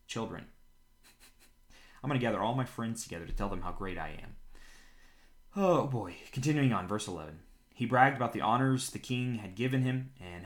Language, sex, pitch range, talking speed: English, male, 100-125 Hz, 190 wpm